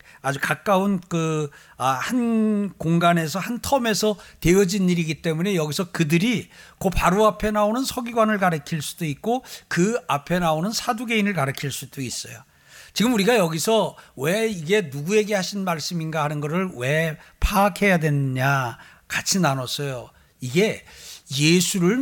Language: Korean